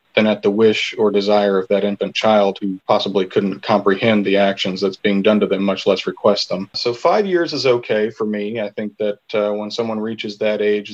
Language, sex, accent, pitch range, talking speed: English, male, American, 100-115 Hz, 225 wpm